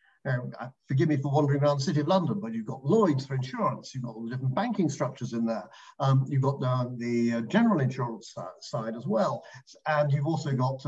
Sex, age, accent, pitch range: male, 50-69, British, 130-175 Hz